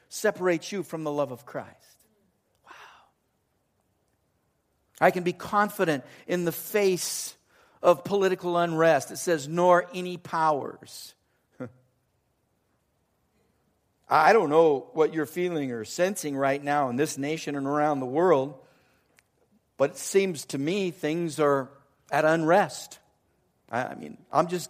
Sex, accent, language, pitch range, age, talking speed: male, American, English, 165-225 Hz, 50-69, 130 wpm